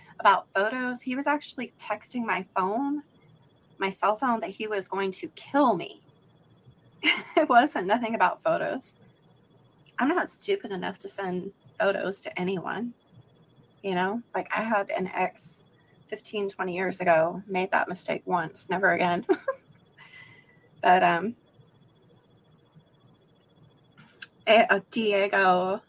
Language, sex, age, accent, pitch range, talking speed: English, female, 30-49, American, 180-235 Hz, 120 wpm